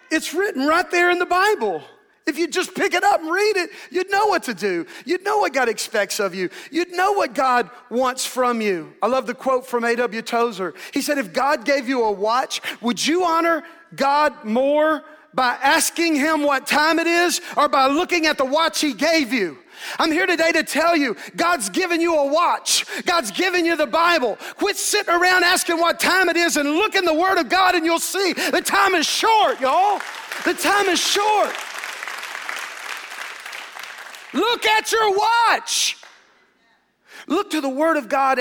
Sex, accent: male, American